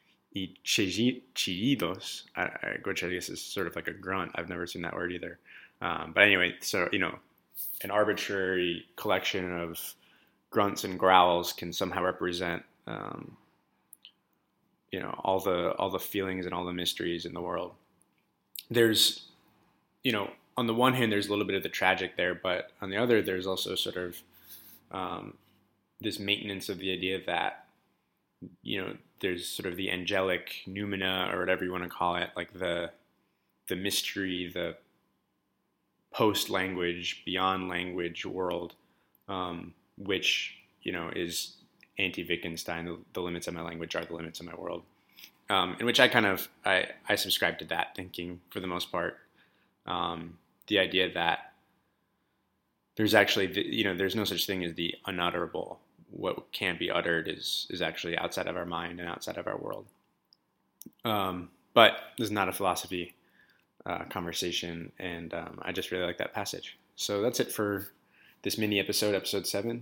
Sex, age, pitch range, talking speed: male, 20-39, 85-100 Hz, 165 wpm